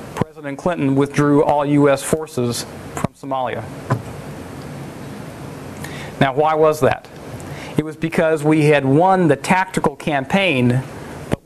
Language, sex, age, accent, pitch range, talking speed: English, male, 40-59, American, 135-170 Hz, 115 wpm